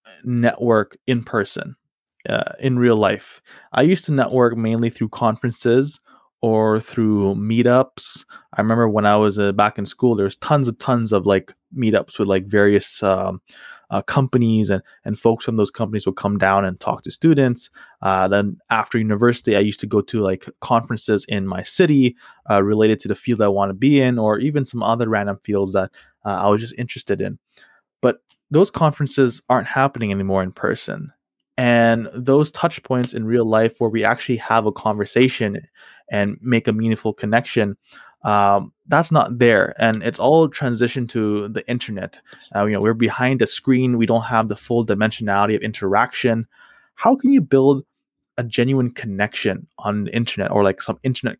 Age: 20-39